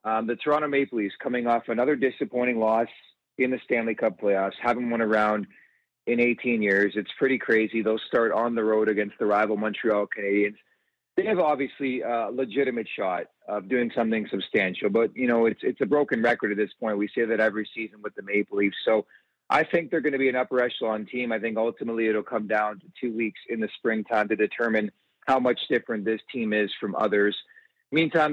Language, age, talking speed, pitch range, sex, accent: English, 40-59, 210 wpm, 110-125 Hz, male, American